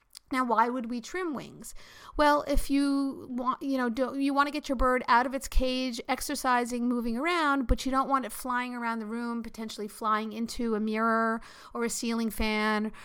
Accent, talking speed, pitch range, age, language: American, 200 wpm, 225-275 Hz, 50-69, English